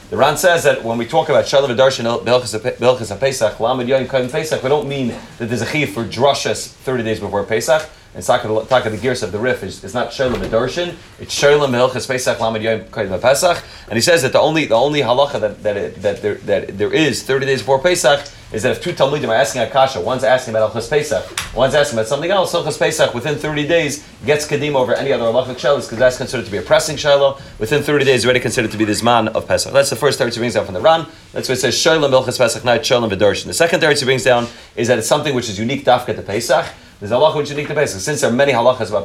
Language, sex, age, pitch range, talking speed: English, male, 30-49, 110-140 Hz, 245 wpm